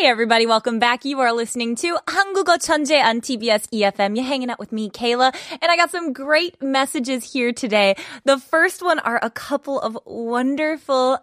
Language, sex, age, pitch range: Korean, female, 20-39, 215-345 Hz